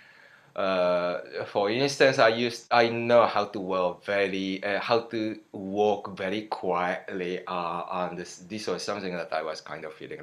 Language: English